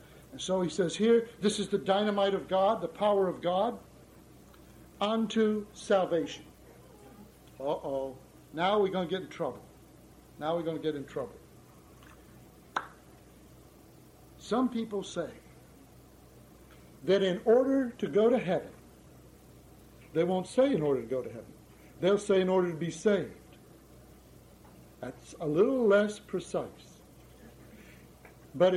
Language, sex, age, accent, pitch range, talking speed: English, male, 60-79, American, 165-230 Hz, 135 wpm